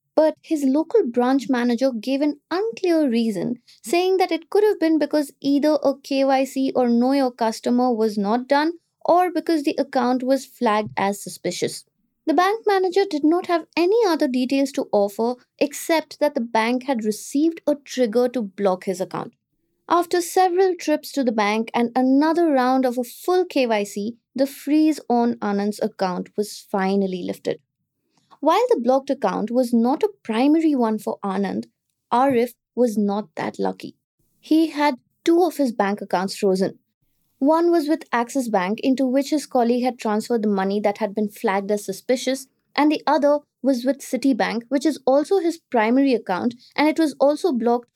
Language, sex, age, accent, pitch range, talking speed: English, female, 20-39, Indian, 225-300 Hz, 175 wpm